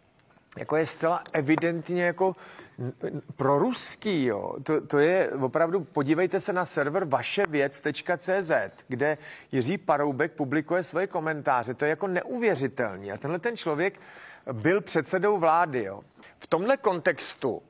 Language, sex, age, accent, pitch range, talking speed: Czech, male, 40-59, native, 140-175 Hz, 130 wpm